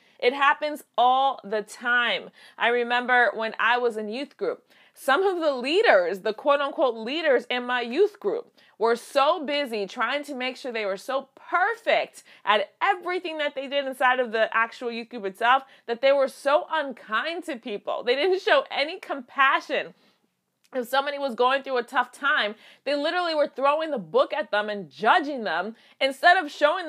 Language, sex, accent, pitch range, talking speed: English, female, American, 210-290 Hz, 185 wpm